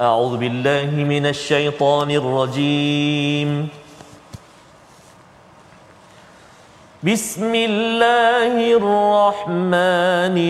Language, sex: Malayalam, male